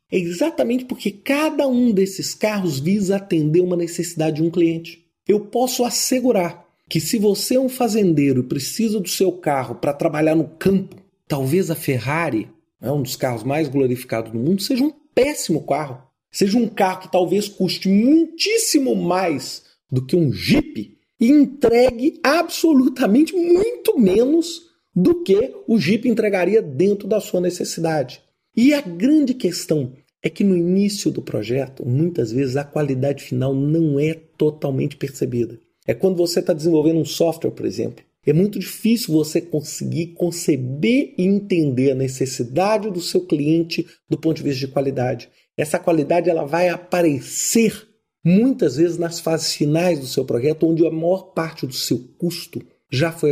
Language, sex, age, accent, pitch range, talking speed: Portuguese, male, 40-59, Brazilian, 150-225 Hz, 160 wpm